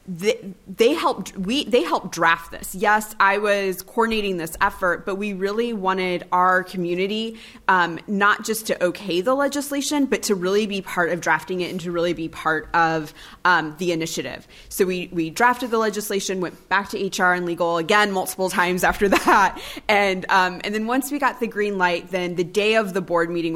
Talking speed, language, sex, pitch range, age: 195 wpm, English, female, 175-210 Hz, 20-39